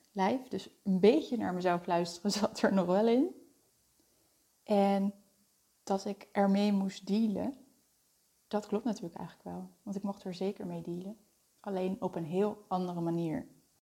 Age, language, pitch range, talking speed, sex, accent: 20-39, Dutch, 180-215 Hz, 150 wpm, female, Dutch